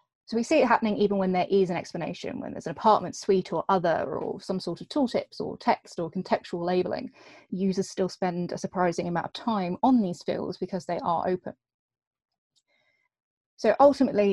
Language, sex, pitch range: English, female, 175-215 Hz